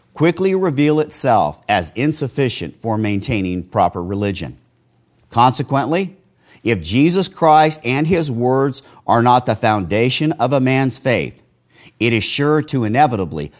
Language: English